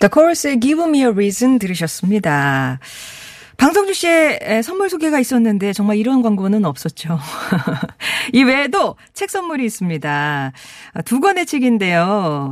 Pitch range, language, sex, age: 165-260 Hz, Korean, female, 40-59